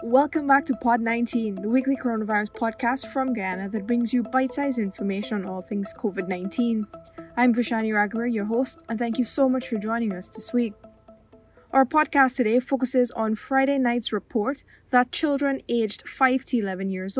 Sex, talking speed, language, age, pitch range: female, 175 wpm, English, 10-29, 205-260 Hz